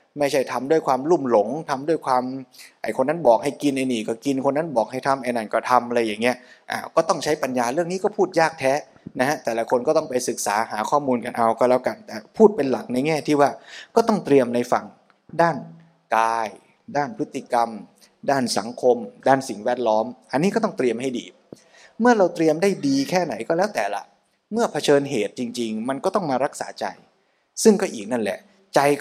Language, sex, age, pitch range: Thai, male, 20-39, 125-170 Hz